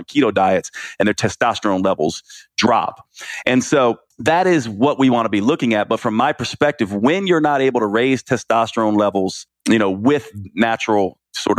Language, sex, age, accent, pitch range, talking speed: English, male, 40-59, American, 105-130 Hz, 180 wpm